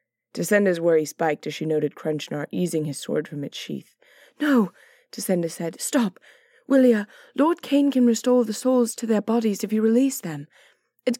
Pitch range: 160-220 Hz